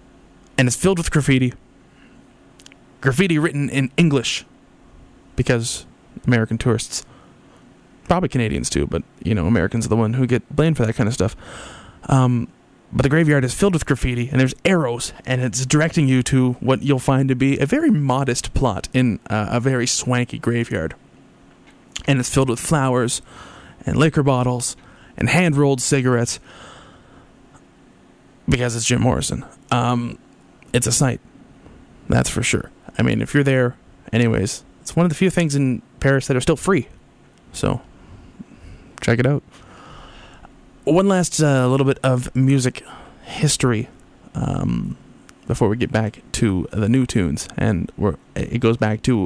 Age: 20-39